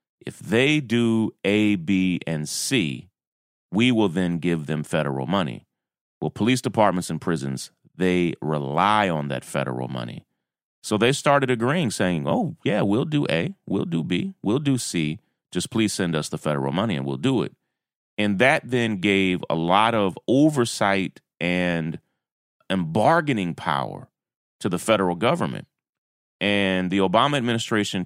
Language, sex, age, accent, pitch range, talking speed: English, male, 30-49, American, 80-115 Hz, 155 wpm